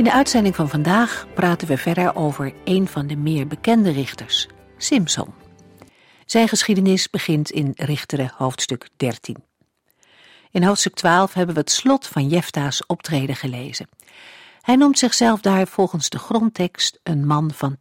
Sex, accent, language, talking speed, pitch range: female, Dutch, Dutch, 150 wpm, 140-190 Hz